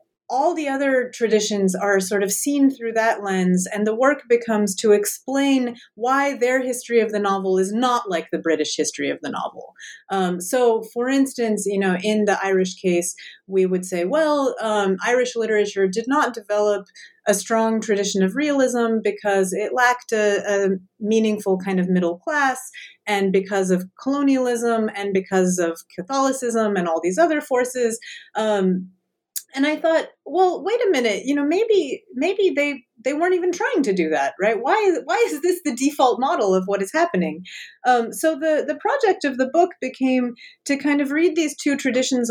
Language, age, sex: English, 30-49, female